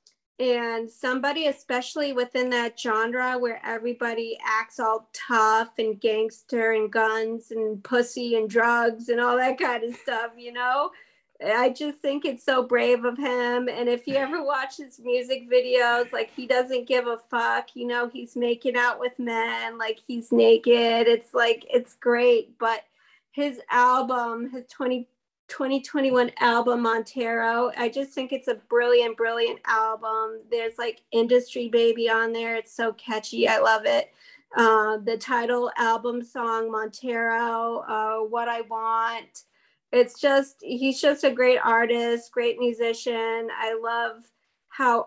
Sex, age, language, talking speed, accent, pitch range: female, 30-49, English, 150 wpm, American, 225-250 Hz